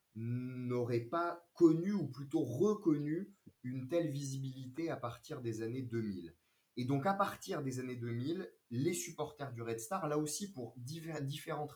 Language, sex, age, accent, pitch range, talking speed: French, male, 30-49, French, 110-150 Hz, 160 wpm